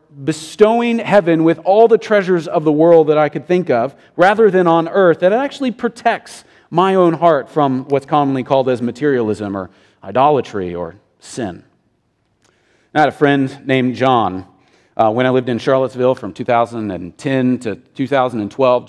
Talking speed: 160 wpm